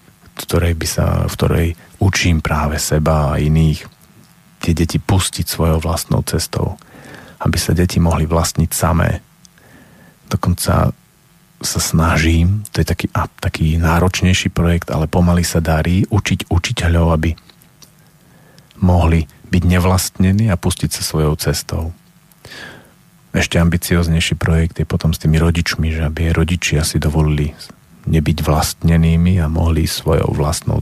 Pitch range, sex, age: 80-95 Hz, male, 40-59